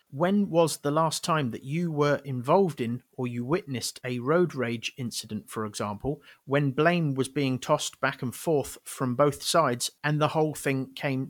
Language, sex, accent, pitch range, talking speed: English, male, British, 125-155 Hz, 185 wpm